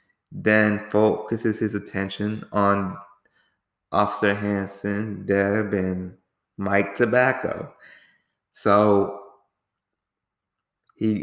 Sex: male